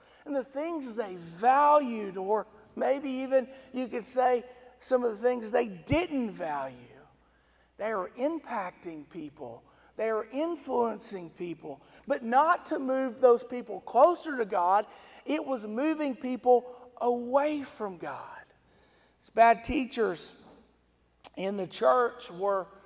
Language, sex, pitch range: English, male, 215-275 Hz